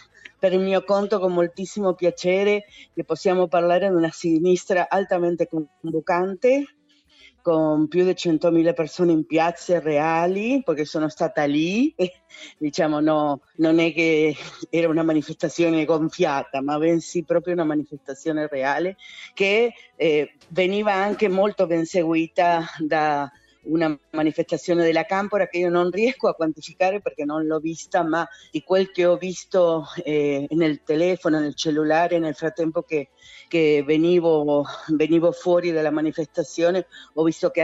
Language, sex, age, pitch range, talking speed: Italian, female, 40-59, 155-180 Hz, 140 wpm